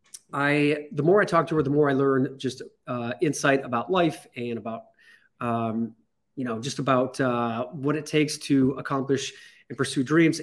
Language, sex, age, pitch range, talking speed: English, male, 30-49, 130-160 Hz, 185 wpm